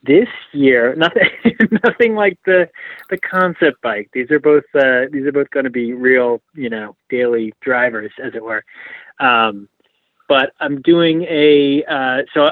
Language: English